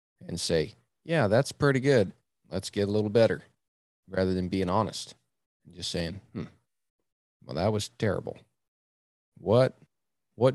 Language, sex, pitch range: English, male, 90-105 Hz